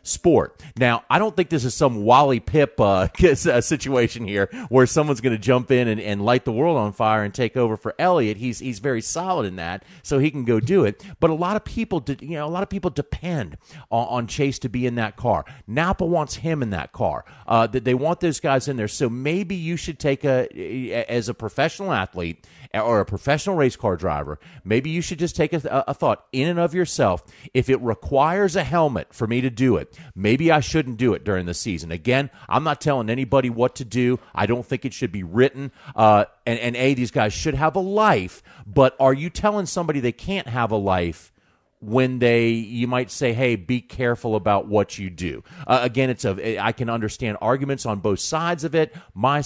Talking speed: 225 wpm